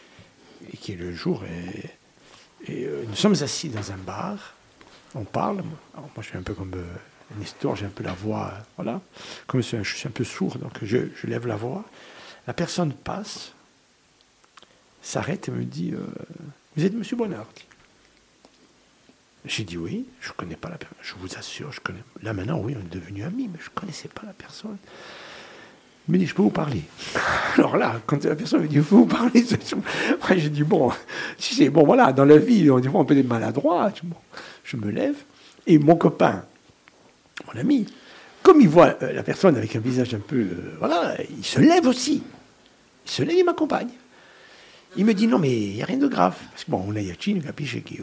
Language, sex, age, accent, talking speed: French, male, 60-79, French, 210 wpm